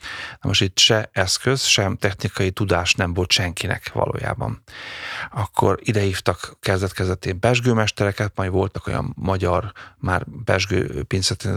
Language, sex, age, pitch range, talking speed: Hungarian, male, 30-49, 90-105 Hz, 110 wpm